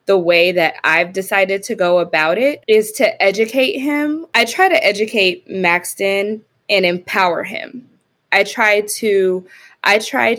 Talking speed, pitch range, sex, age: 150 wpm, 180-250 Hz, female, 20-39